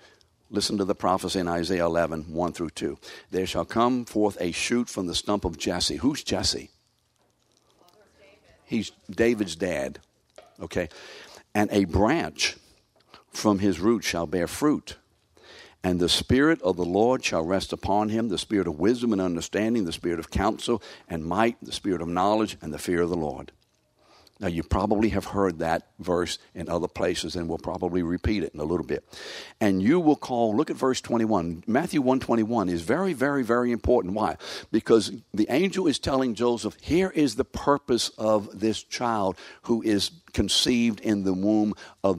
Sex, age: male, 60-79